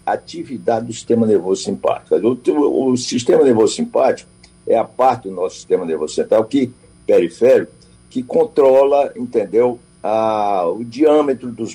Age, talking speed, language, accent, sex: 60-79, 140 wpm, Portuguese, Brazilian, male